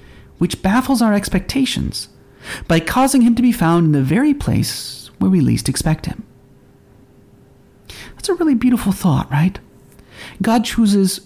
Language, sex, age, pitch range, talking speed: English, male, 40-59, 155-230 Hz, 145 wpm